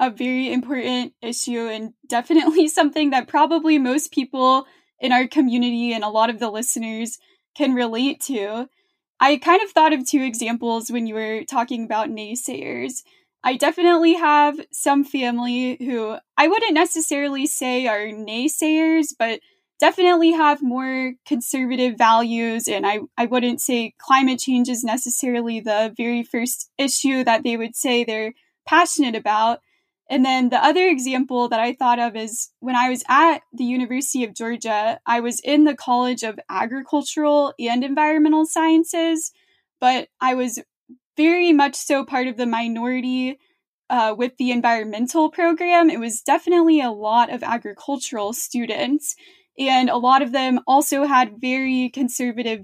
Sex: female